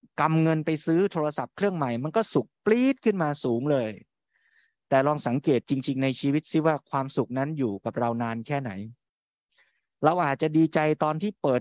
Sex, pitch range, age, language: male, 125-160 Hz, 20-39, Thai